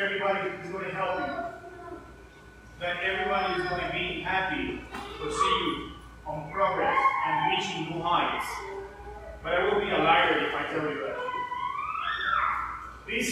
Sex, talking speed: male, 150 wpm